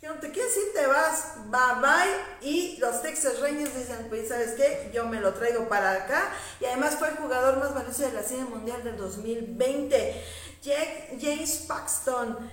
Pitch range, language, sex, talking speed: 225-280 Hz, Spanish, female, 170 wpm